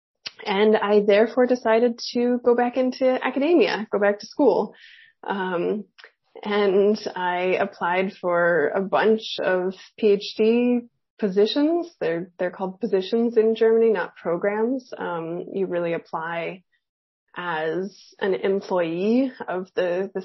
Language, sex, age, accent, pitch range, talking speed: English, female, 20-39, American, 190-245 Hz, 120 wpm